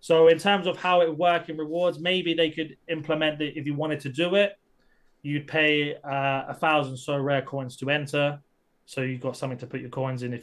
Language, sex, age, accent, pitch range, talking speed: English, male, 20-39, British, 125-155 Hz, 230 wpm